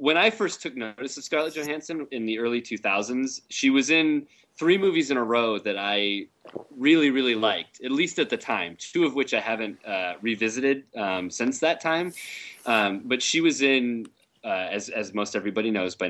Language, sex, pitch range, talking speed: English, male, 105-135 Hz, 200 wpm